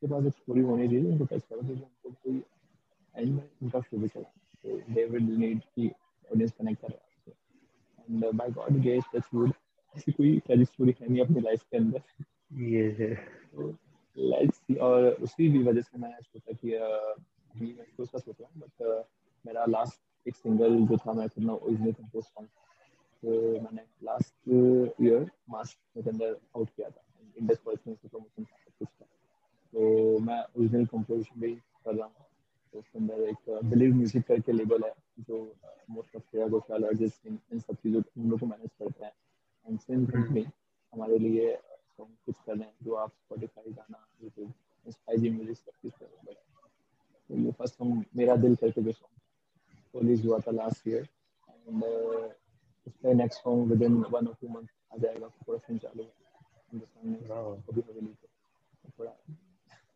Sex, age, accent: male, 20-39, native